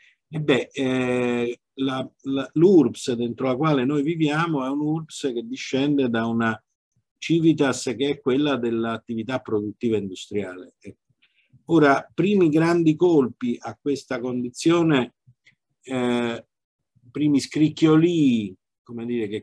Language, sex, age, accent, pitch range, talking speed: Italian, male, 50-69, native, 115-145 Hz, 115 wpm